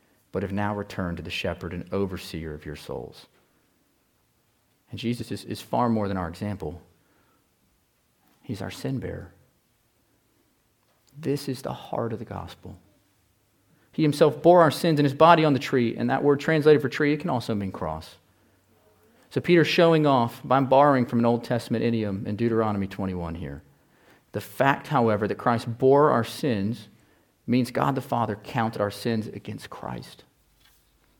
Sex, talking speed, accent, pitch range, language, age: male, 165 wpm, American, 95-140 Hz, English, 40-59